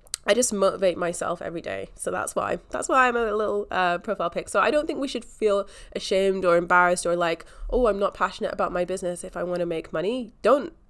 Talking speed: 235 wpm